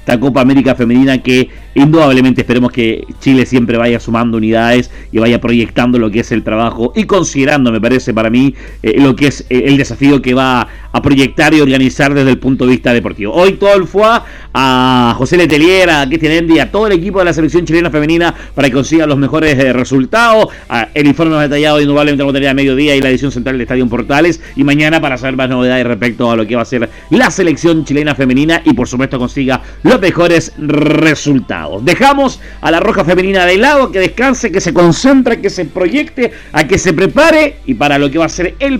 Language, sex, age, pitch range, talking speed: Spanish, male, 40-59, 130-195 Hz, 215 wpm